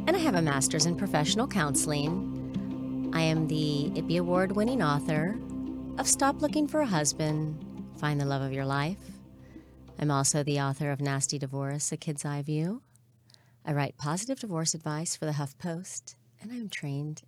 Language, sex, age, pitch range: English, female, 40-59, 125-160 Hz